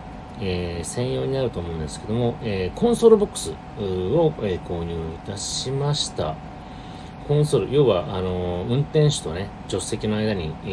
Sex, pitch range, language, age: male, 85-145 Hz, Japanese, 40-59